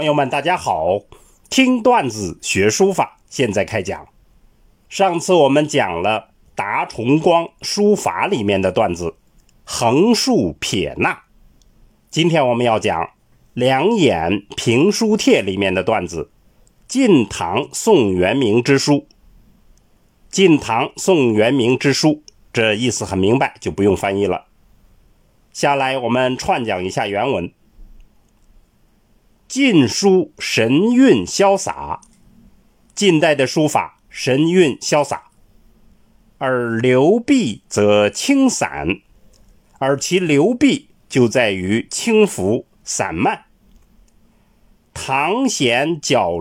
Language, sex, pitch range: Chinese, male, 110-180 Hz